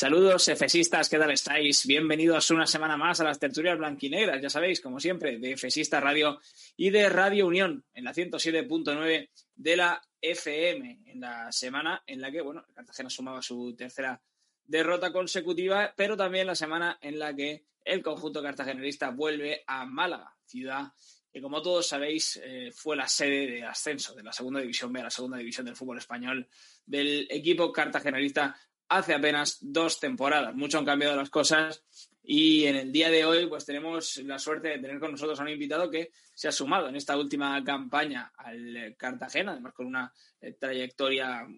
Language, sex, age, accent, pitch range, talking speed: Spanish, male, 20-39, Spanish, 135-165 Hz, 175 wpm